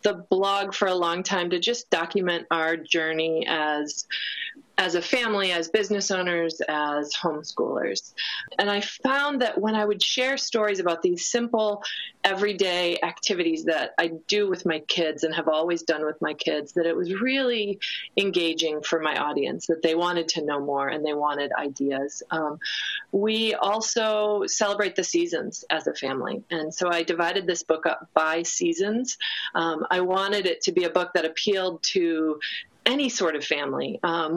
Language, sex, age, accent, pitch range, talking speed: English, female, 30-49, American, 160-205 Hz, 175 wpm